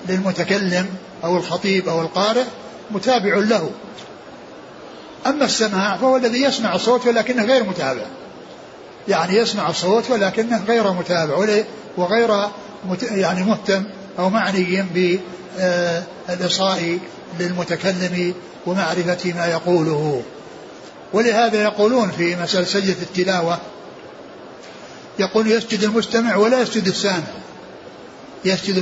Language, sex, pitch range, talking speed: Arabic, male, 180-225 Hz, 95 wpm